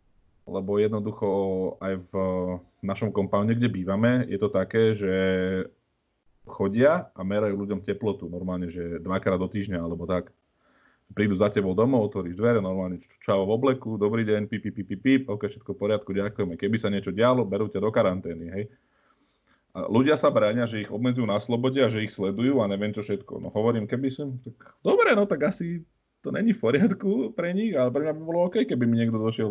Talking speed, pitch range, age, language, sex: 200 wpm, 100-130 Hz, 30-49, Slovak, male